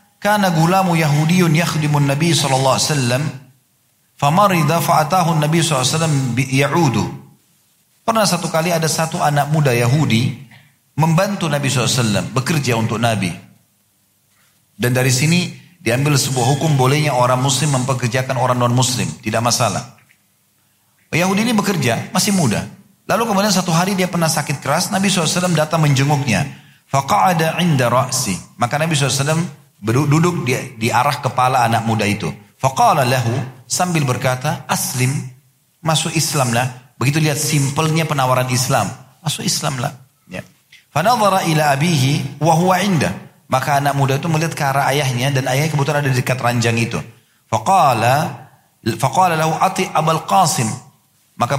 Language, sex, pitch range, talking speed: Indonesian, male, 130-160 Hz, 145 wpm